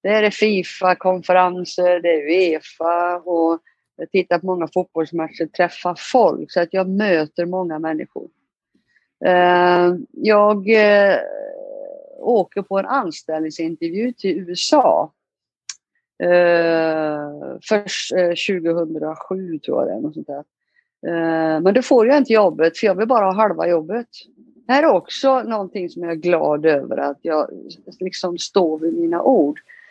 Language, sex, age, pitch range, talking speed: Swedish, female, 50-69, 165-210 Hz, 130 wpm